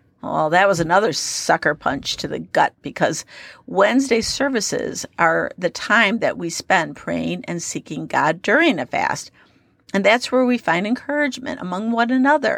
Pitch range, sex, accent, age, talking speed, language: 165-240 Hz, female, American, 50-69, 160 wpm, English